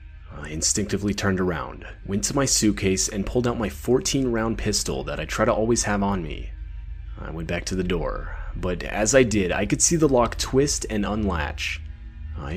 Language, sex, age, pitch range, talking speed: English, male, 30-49, 85-115 Hz, 195 wpm